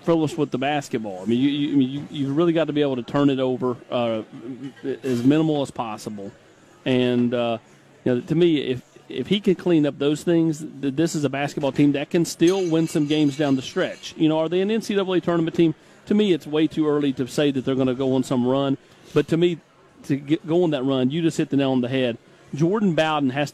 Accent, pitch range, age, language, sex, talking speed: American, 130-160 Hz, 40-59, English, male, 245 wpm